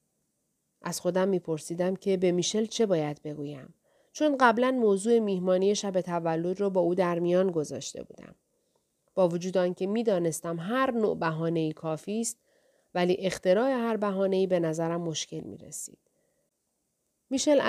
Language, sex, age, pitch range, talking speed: Persian, female, 40-59, 170-210 Hz, 140 wpm